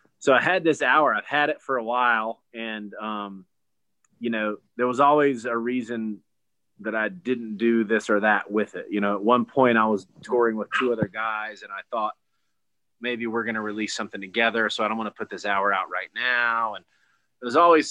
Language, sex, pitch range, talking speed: English, male, 110-125 Hz, 220 wpm